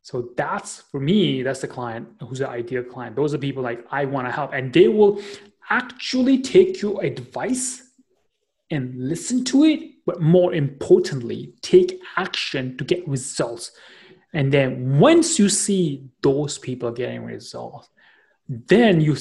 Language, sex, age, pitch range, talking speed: English, male, 30-49, 130-185 Hz, 150 wpm